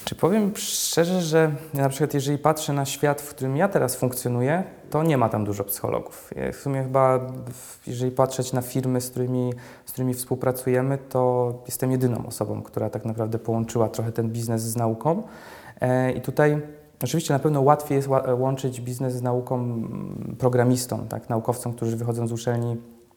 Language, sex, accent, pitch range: Polish, male, native, 120-140 Hz